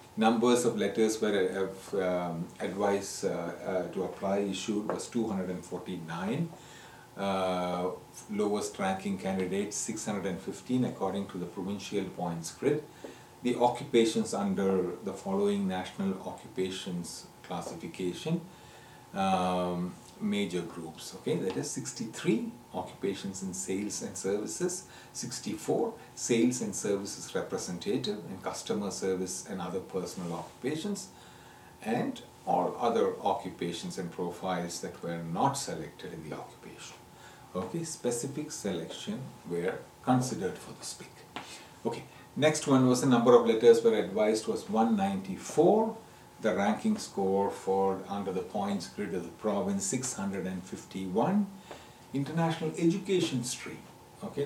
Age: 40-59